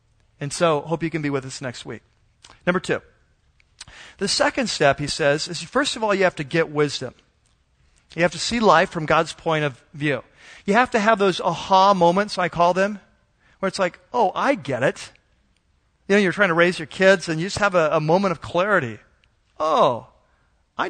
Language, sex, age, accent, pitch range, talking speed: English, male, 40-59, American, 145-195 Hz, 205 wpm